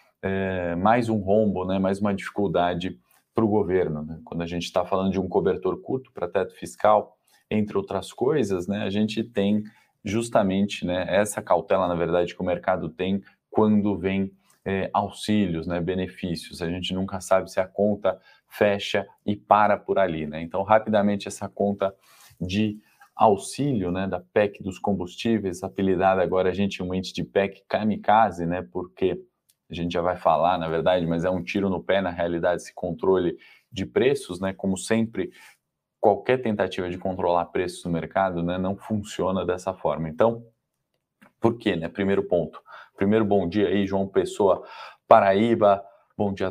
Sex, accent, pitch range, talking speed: male, Brazilian, 90-105 Hz, 170 wpm